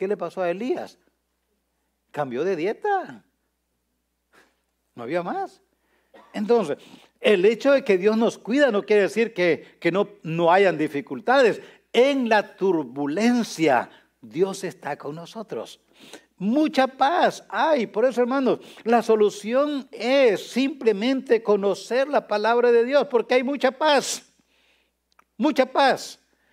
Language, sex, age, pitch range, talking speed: English, male, 60-79, 195-265 Hz, 125 wpm